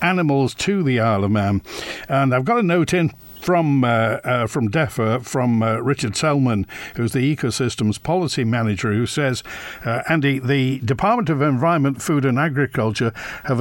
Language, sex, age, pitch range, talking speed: English, male, 60-79, 120-155 Hz, 170 wpm